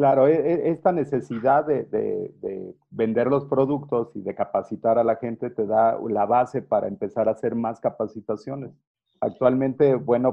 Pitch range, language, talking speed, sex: 110-135 Hz, Spanish, 155 wpm, male